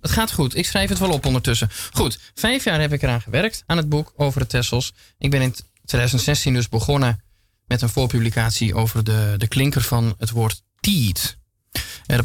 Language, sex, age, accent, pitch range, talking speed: Dutch, male, 20-39, Dutch, 115-145 Hz, 195 wpm